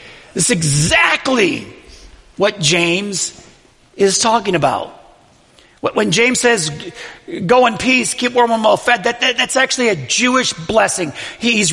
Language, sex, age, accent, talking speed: English, male, 40-59, American, 130 wpm